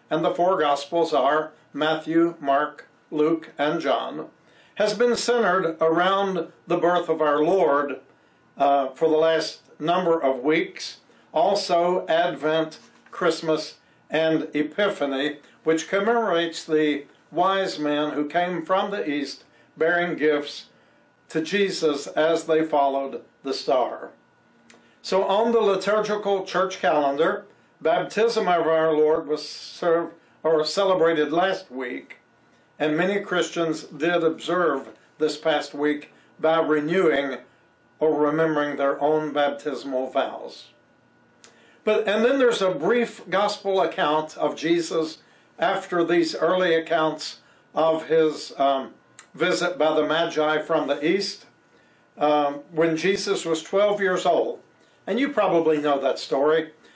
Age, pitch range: 60-79, 150-180 Hz